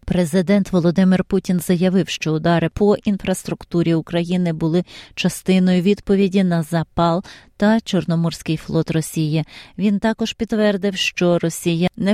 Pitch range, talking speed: 165-200 Hz, 120 wpm